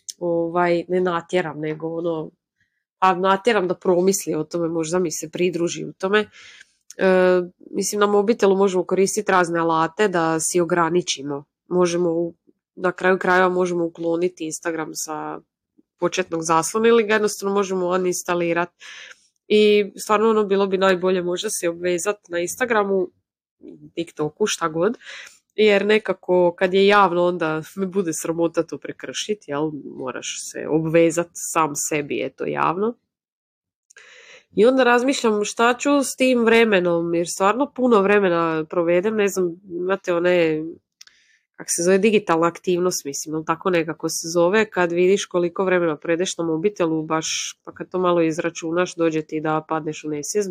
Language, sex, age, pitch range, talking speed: Croatian, female, 20-39, 165-195 Hz, 145 wpm